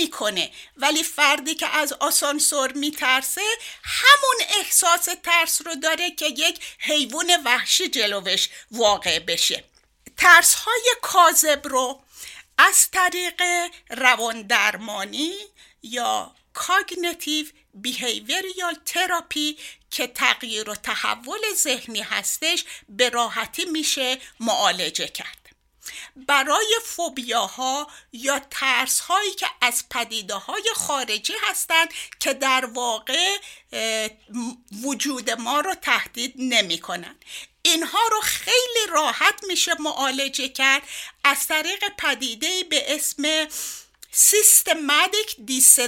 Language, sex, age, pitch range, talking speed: Persian, female, 60-79, 255-360 Hz, 95 wpm